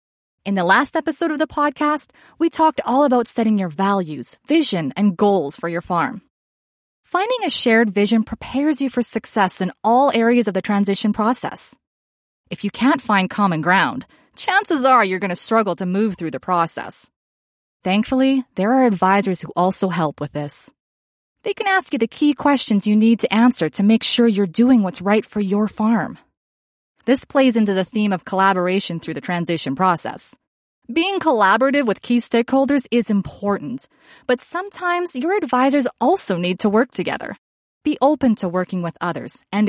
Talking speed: 175 wpm